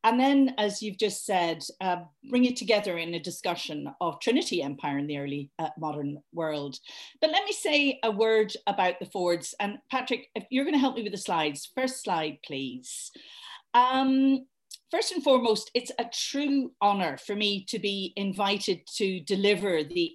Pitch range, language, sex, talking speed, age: 180-245 Hz, English, female, 180 wpm, 40-59